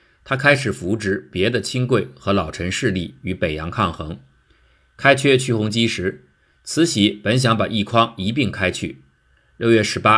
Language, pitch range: Chinese, 90-115 Hz